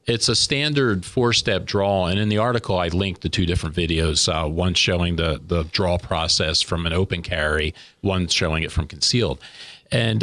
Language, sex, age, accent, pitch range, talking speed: English, male, 40-59, American, 85-110 Hz, 190 wpm